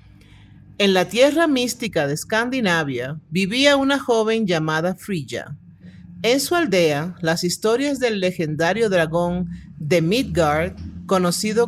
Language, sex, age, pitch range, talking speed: Spanish, male, 50-69, 150-220 Hz, 115 wpm